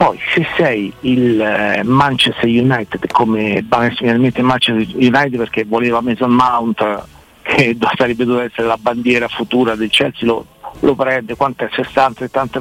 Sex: male